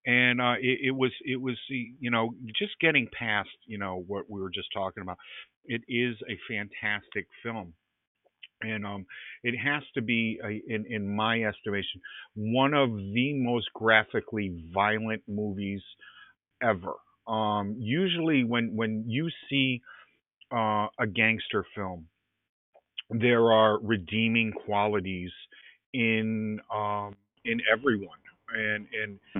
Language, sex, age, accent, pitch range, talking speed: English, male, 50-69, American, 105-120 Hz, 130 wpm